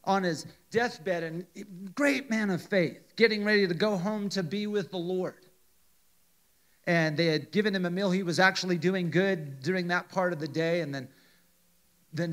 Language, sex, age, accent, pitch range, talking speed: English, male, 40-59, American, 145-180 Hz, 190 wpm